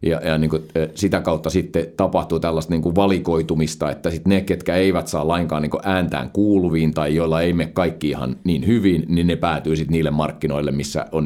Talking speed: 210 wpm